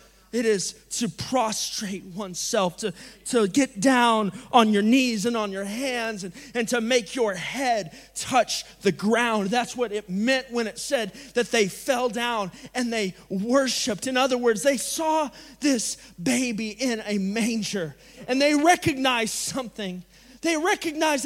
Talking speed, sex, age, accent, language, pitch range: 155 wpm, male, 30-49, American, English, 215-280 Hz